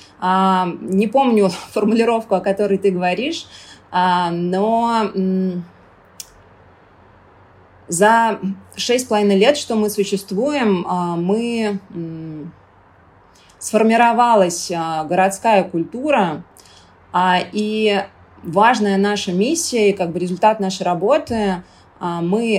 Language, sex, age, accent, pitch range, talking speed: Russian, female, 20-39, native, 175-205 Hz, 70 wpm